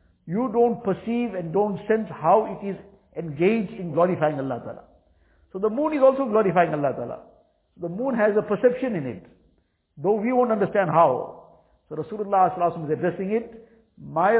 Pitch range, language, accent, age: 170-225 Hz, English, Indian, 60-79